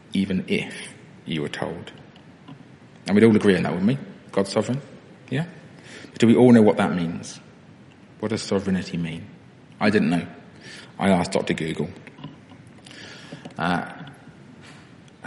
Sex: male